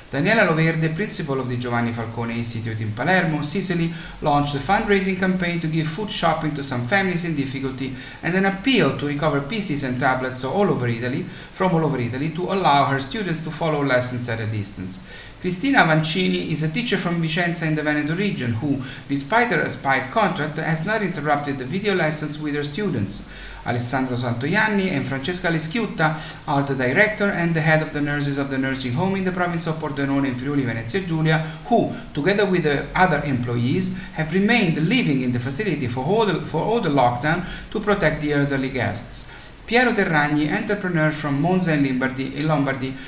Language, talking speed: English, 190 wpm